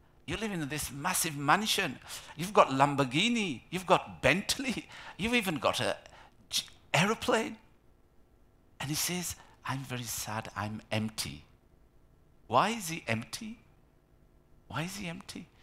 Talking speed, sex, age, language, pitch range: 130 wpm, male, 50-69, English, 105-155 Hz